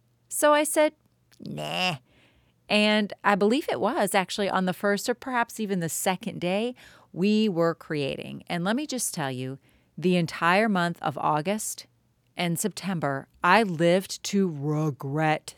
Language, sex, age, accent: English, female, 40-59, American